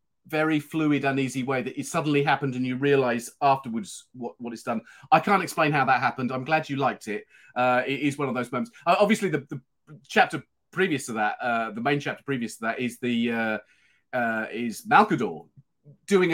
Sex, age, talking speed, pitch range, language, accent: male, 30-49, 205 wpm, 125-160 Hz, English, British